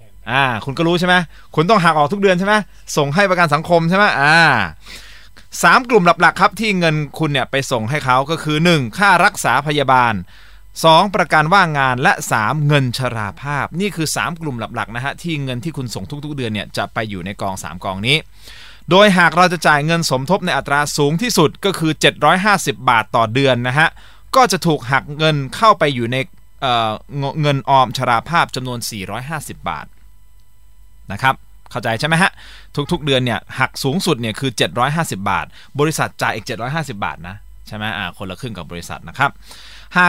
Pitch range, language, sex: 120-165 Hz, Thai, male